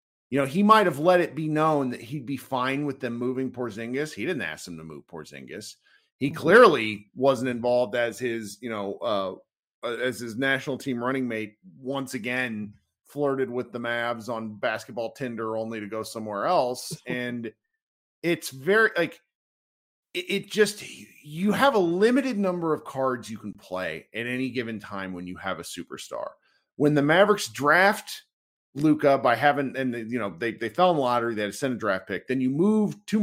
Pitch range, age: 120-165 Hz, 40-59